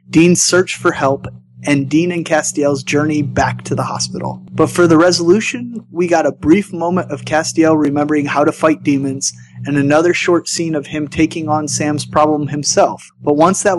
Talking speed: 185 wpm